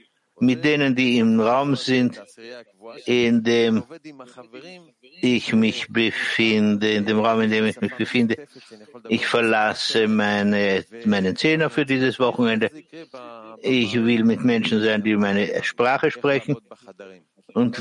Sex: male